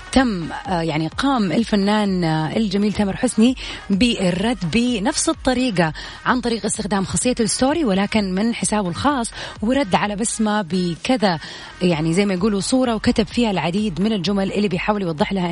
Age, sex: 30-49, female